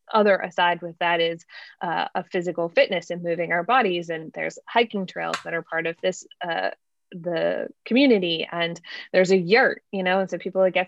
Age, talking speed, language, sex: 20-39, 195 wpm, English, female